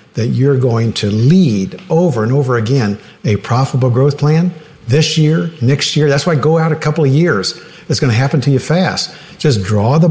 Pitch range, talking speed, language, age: 115-160 Hz, 210 wpm, English, 50-69